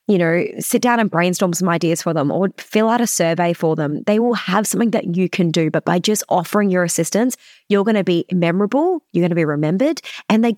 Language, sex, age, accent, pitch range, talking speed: English, female, 20-39, Australian, 165-210 Hz, 245 wpm